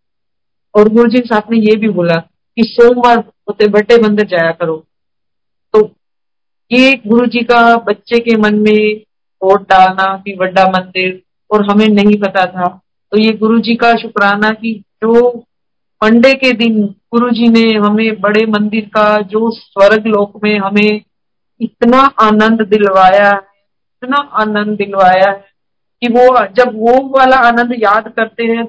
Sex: female